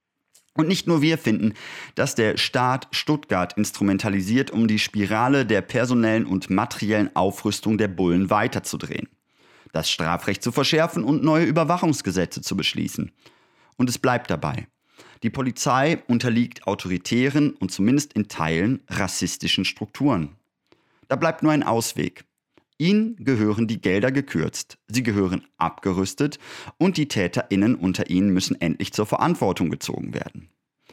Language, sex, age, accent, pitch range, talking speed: German, male, 30-49, German, 95-135 Hz, 130 wpm